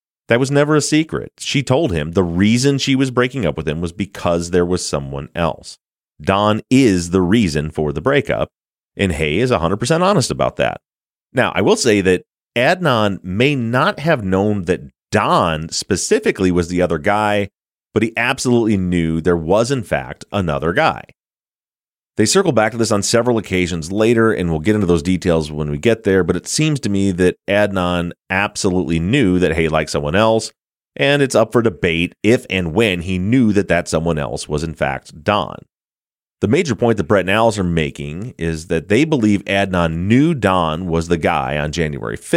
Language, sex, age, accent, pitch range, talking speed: English, male, 30-49, American, 85-115 Hz, 190 wpm